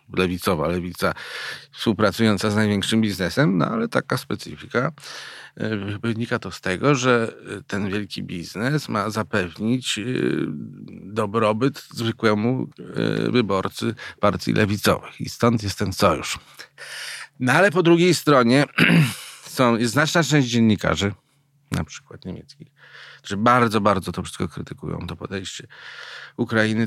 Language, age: Polish, 40-59